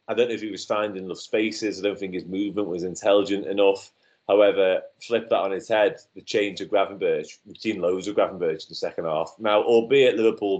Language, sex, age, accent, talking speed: English, male, 30-49, British, 220 wpm